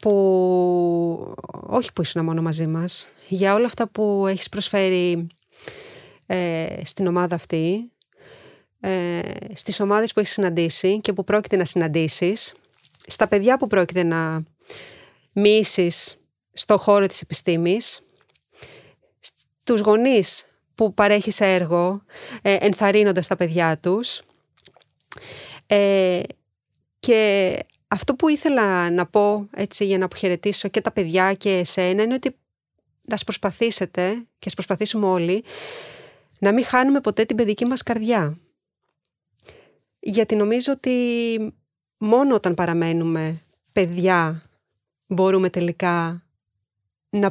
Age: 30-49